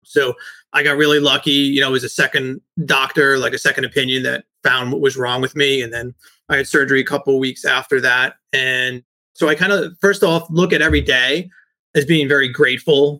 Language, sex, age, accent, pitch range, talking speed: English, male, 30-49, American, 135-165 Hz, 225 wpm